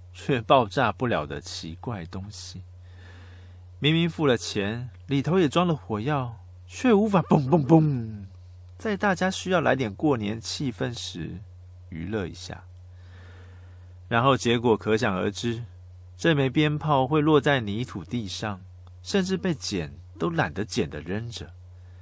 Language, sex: Chinese, male